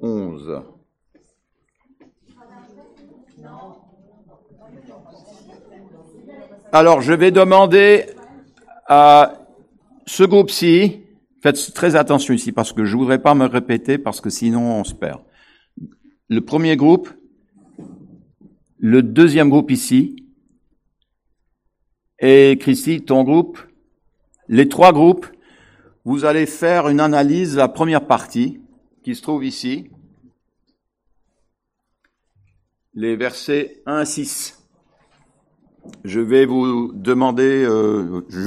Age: 60-79